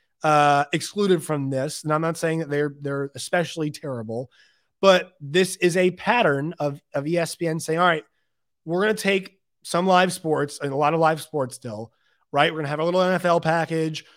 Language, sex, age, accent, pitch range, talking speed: English, male, 30-49, American, 145-180 Hz, 205 wpm